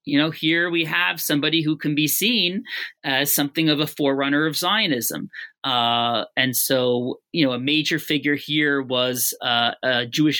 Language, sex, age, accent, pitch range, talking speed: English, male, 30-49, American, 140-165 Hz, 175 wpm